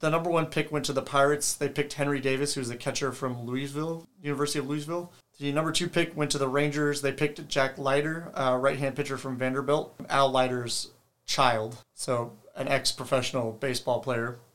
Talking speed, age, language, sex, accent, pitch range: 185 wpm, 30-49, English, male, American, 130-150 Hz